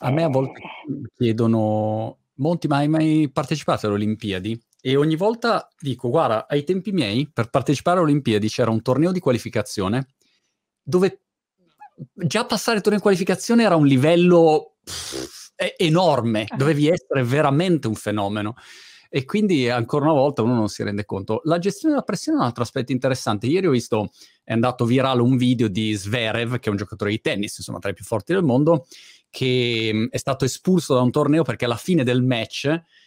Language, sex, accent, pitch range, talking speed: Italian, male, native, 115-160 Hz, 185 wpm